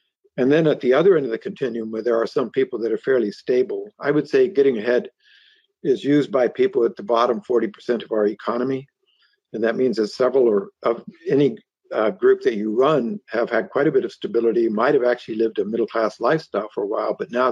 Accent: American